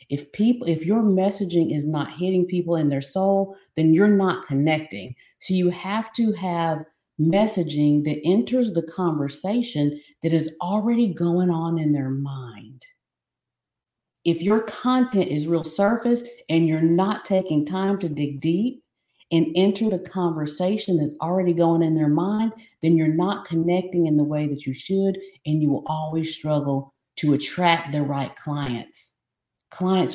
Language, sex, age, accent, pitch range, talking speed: English, female, 50-69, American, 145-185 Hz, 155 wpm